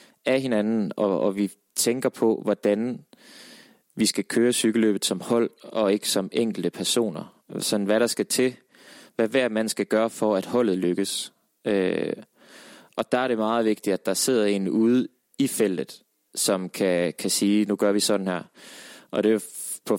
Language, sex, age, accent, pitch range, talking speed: English, male, 20-39, Danish, 100-120 Hz, 175 wpm